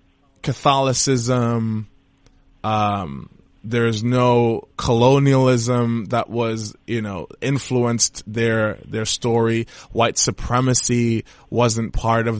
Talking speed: 85 wpm